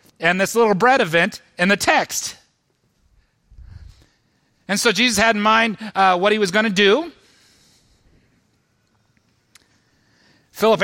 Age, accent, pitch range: 30-49, American, 125-200 Hz